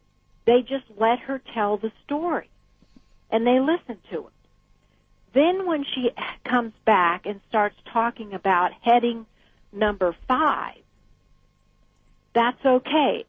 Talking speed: 115 wpm